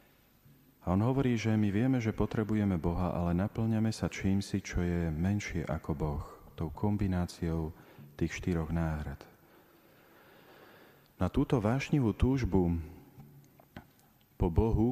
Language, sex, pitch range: Slovak, male, 85-105 Hz